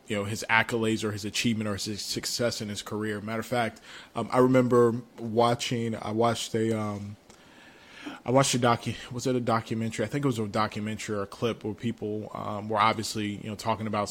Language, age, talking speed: English, 20-39, 215 wpm